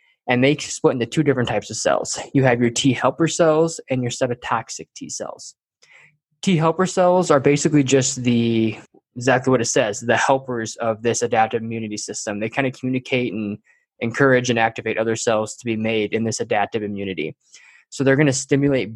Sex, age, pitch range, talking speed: male, 20-39, 115-135 Hz, 185 wpm